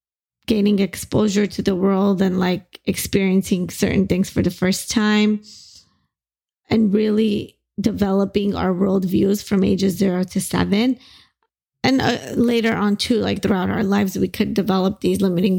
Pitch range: 190-215 Hz